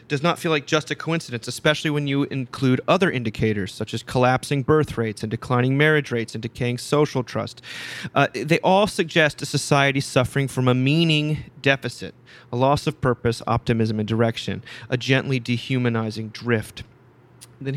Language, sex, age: English, male, 30-49